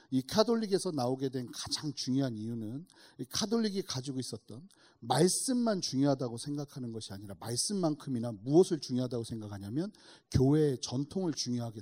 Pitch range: 130-205 Hz